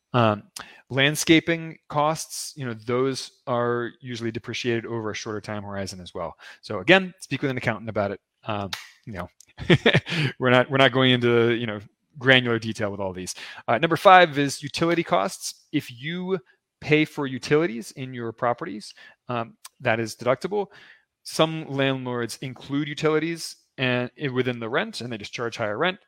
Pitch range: 115-155 Hz